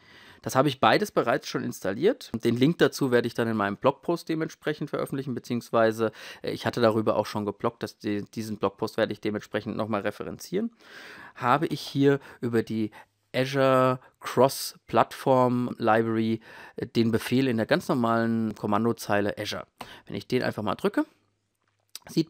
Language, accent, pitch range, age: German, German, 105-130 Hz, 30-49